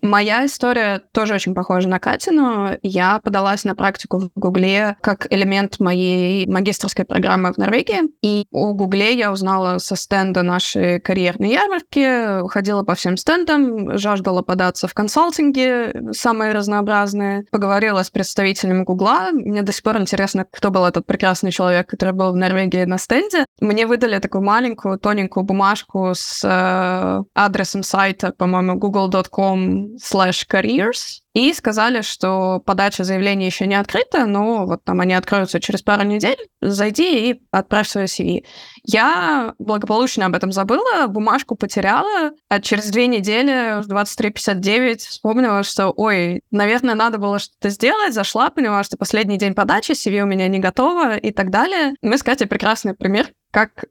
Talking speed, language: 150 wpm, Russian